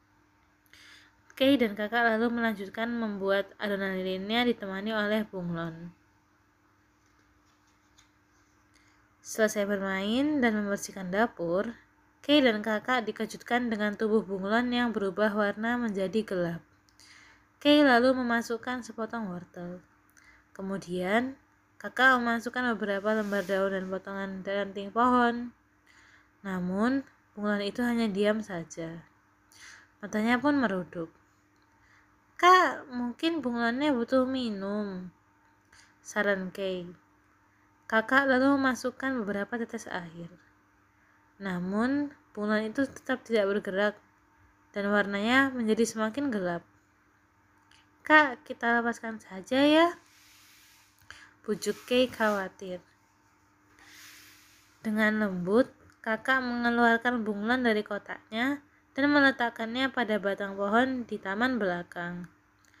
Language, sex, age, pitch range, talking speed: Indonesian, female, 20-39, 170-235 Hz, 95 wpm